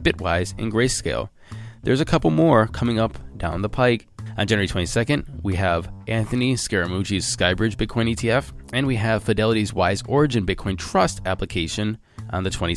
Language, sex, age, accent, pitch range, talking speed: English, male, 20-39, American, 95-120 Hz, 155 wpm